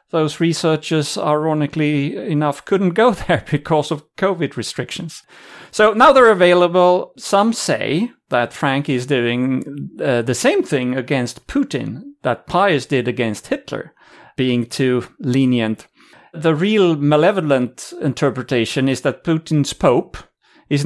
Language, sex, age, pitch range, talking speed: English, male, 40-59, 130-170 Hz, 125 wpm